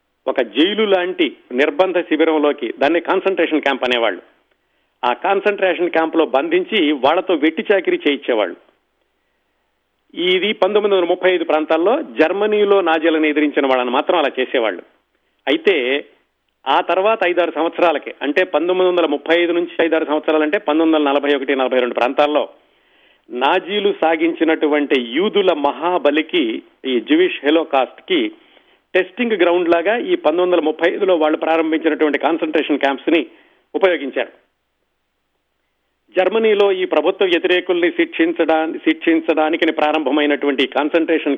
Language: Telugu